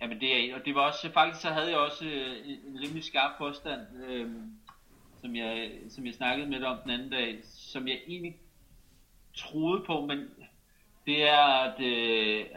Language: Danish